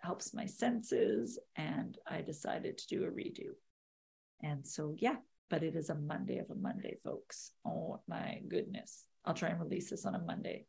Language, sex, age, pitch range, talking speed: English, female, 40-59, 185-255 Hz, 185 wpm